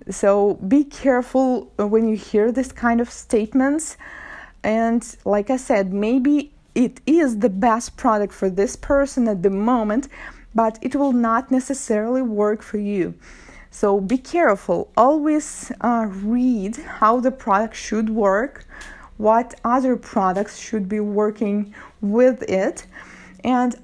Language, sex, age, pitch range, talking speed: English, female, 20-39, 210-260 Hz, 135 wpm